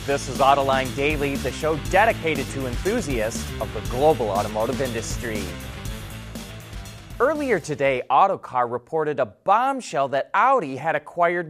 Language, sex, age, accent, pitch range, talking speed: English, male, 30-49, American, 125-175 Hz, 125 wpm